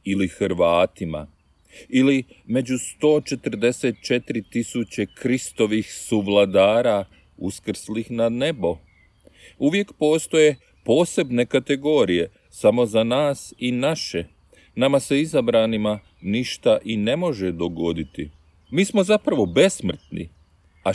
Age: 40-59